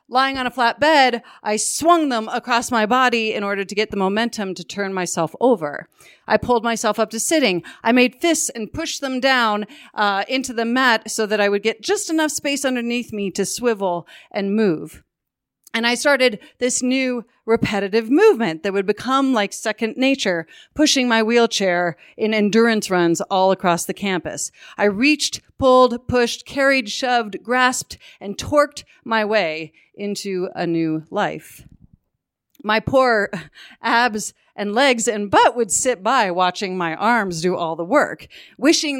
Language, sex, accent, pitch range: English, female, American, 200-250 Hz